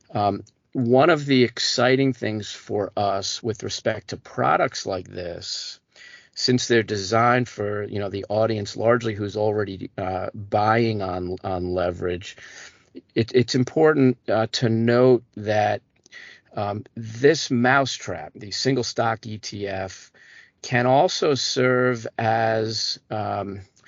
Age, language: 40-59, English